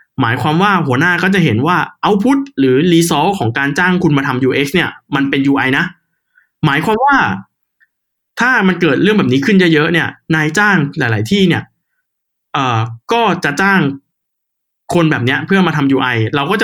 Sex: male